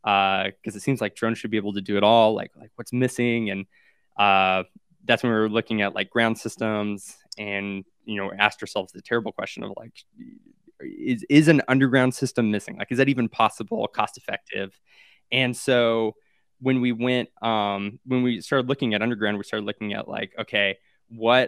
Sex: male